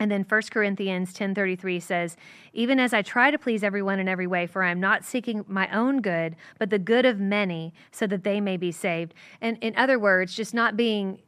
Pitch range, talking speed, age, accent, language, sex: 180-215 Hz, 225 wpm, 30-49, American, English, female